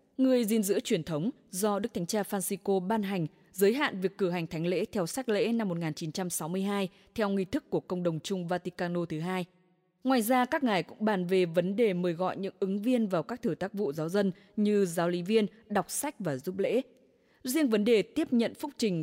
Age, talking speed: 20-39, 225 wpm